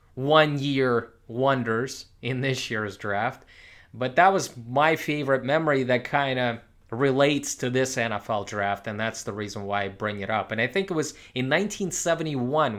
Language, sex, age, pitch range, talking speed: English, male, 20-39, 110-140 Hz, 170 wpm